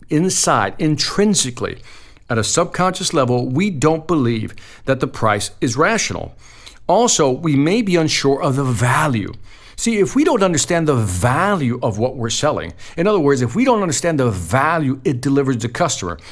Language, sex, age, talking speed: English, male, 50-69, 170 wpm